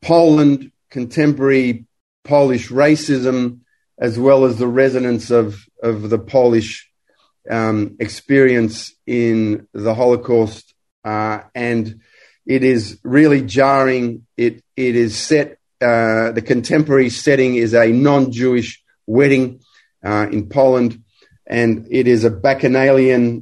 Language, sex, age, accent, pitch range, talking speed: English, male, 40-59, Australian, 115-130 Hz, 115 wpm